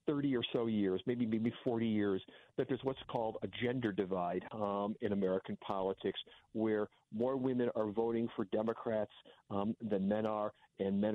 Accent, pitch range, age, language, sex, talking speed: American, 105-120 Hz, 50-69, English, male, 170 wpm